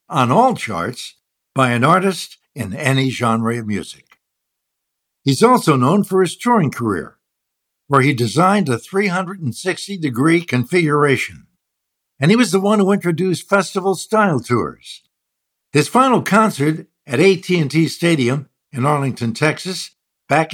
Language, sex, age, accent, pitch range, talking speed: English, male, 60-79, American, 130-190 Hz, 130 wpm